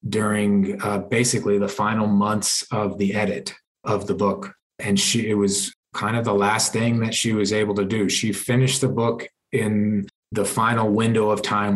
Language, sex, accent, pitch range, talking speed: English, male, American, 100-115 Hz, 190 wpm